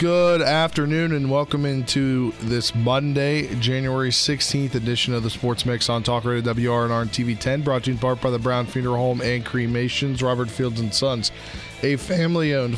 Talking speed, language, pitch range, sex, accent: 185 wpm, English, 110-135 Hz, male, American